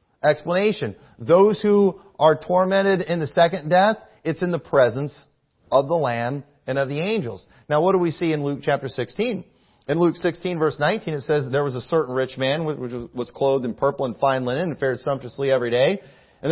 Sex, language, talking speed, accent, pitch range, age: male, English, 205 wpm, American, 140-185 Hz, 40-59